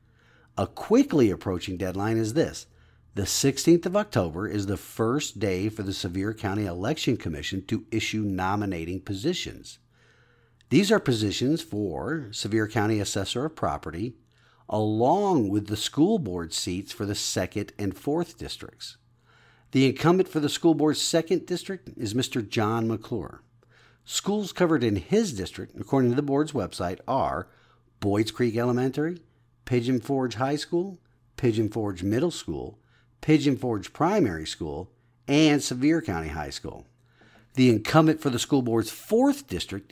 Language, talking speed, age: English, 145 wpm, 50-69